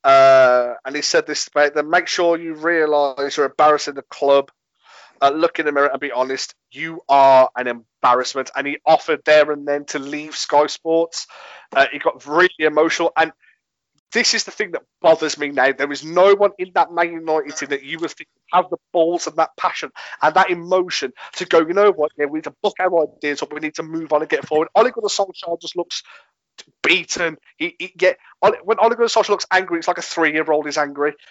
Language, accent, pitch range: English, British, 150-195 Hz